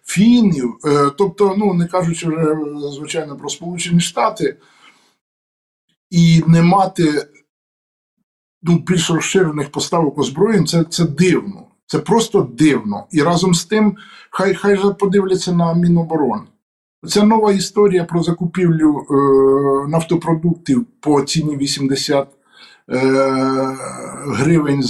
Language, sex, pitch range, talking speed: Ukrainian, male, 140-185 Hz, 110 wpm